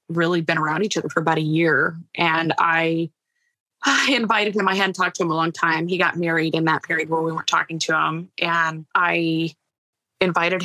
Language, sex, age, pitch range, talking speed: English, female, 20-39, 165-190 Hz, 210 wpm